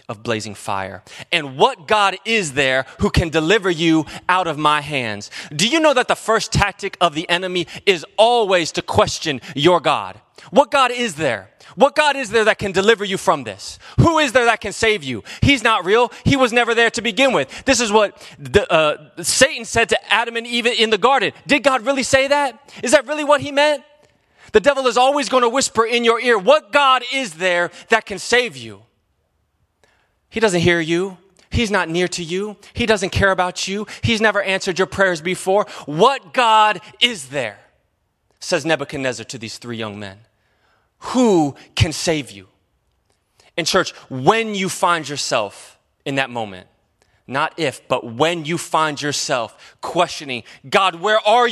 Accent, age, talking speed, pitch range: American, 30-49, 190 wpm, 155-245 Hz